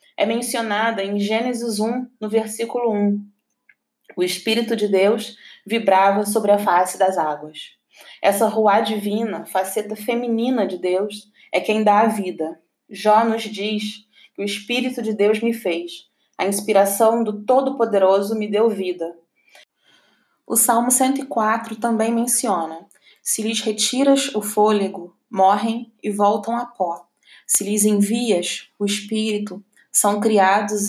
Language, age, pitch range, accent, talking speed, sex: Portuguese, 20-39, 195-230 Hz, Brazilian, 135 wpm, female